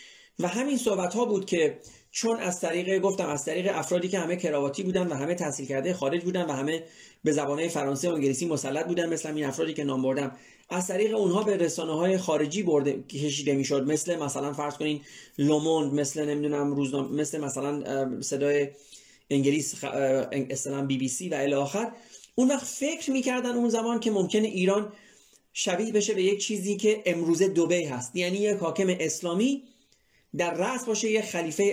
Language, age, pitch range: Persian, 30-49, 145-205 Hz